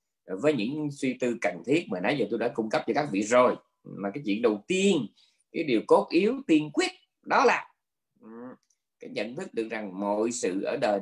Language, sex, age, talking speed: Vietnamese, male, 20-39, 210 wpm